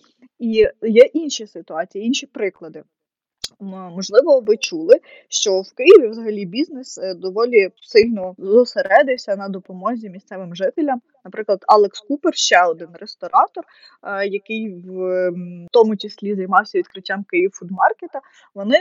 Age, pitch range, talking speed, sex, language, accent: 20-39, 195-275 Hz, 110 wpm, female, Ukrainian, native